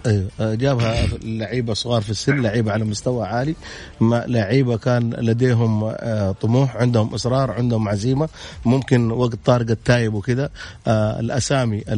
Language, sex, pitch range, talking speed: Arabic, male, 110-125 Hz, 125 wpm